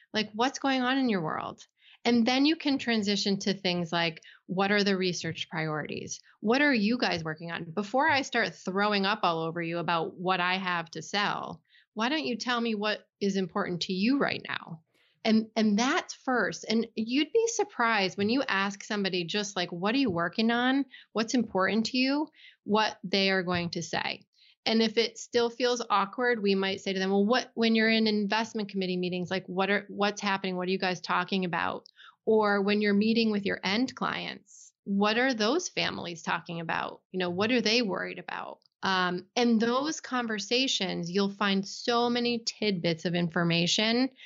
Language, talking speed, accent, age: English, 195 wpm, American, 30-49